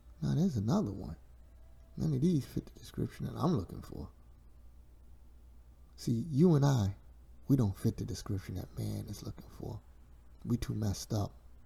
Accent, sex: American, male